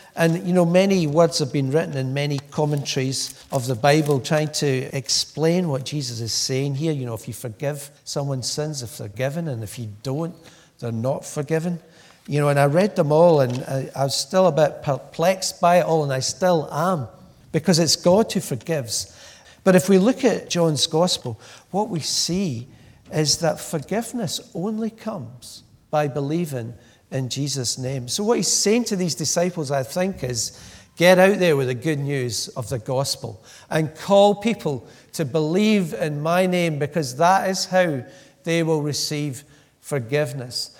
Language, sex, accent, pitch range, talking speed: English, male, British, 135-175 Hz, 180 wpm